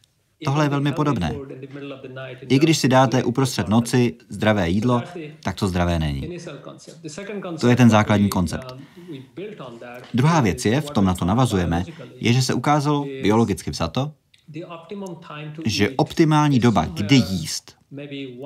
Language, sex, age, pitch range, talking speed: Czech, male, 30-49, 105-140 Hz, 130 wpm